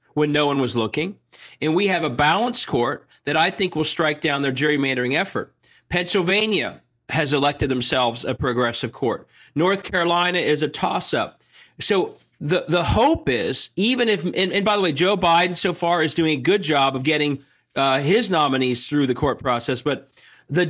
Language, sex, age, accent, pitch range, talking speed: English, male, 40-59, American, 135-185 Hz, 190 wpm